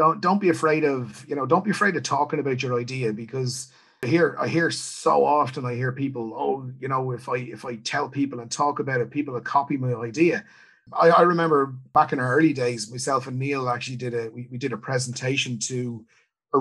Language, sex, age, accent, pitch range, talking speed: English, male, 30-49, Irish, 125-155 Hz, 230 wpm